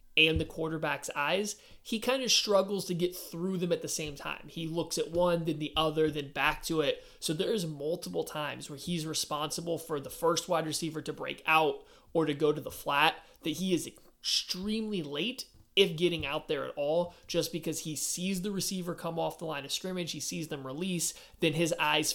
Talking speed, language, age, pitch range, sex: 210 wpm, English, 20-39, 150-175 Hz, male